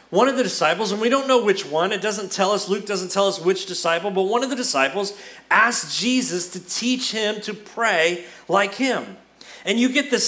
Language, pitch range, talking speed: English, 185-220 Hz, 220 wpm